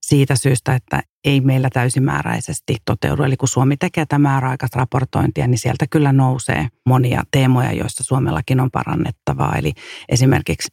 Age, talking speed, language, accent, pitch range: 40-59, 140 wpm, Finnish, native, 125-145 Hz